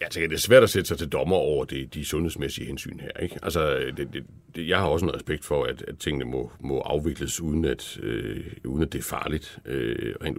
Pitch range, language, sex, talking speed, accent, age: 80-110 Hz, Danish, male, 235 wpm, native, 60-79